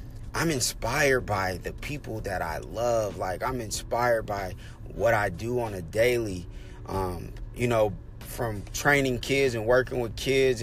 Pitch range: 110-140 Hz